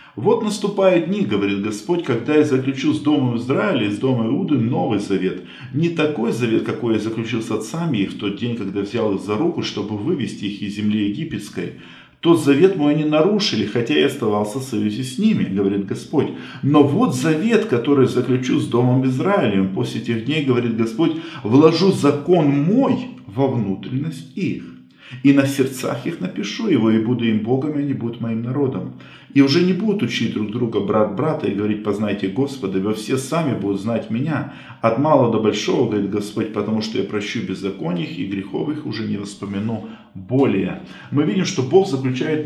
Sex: male